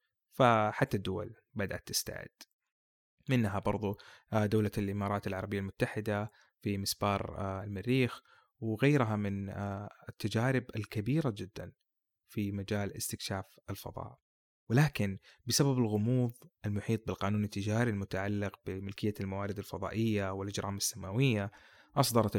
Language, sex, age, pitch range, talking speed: Arabic, male, 20-39, 100-125 Hz, 95 wpm